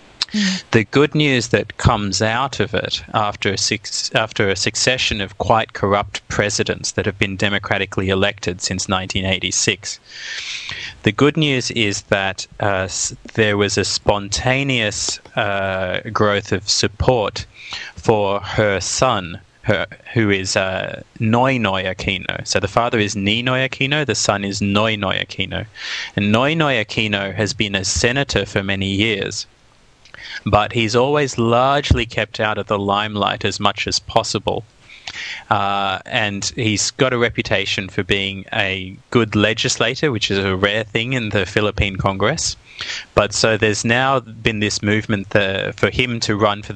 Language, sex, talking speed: English, male, 150 wpm